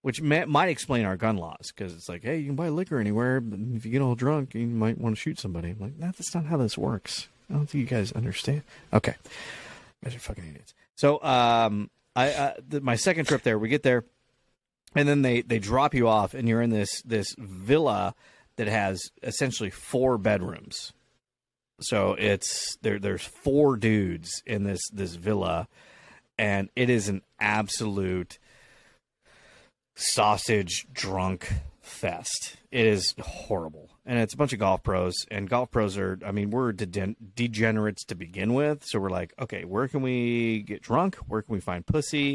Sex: male